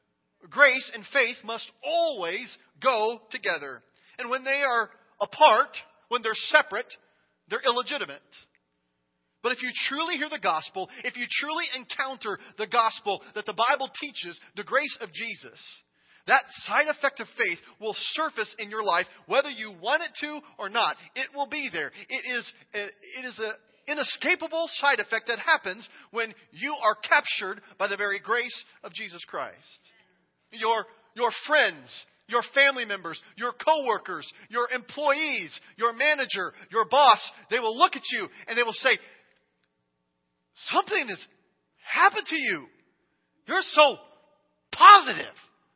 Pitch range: 215-295 Hz